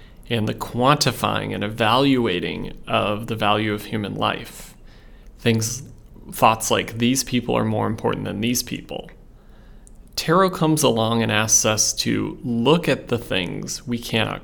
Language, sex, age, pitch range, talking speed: English, male, 30-49, 115-135 Hz, 145 wpm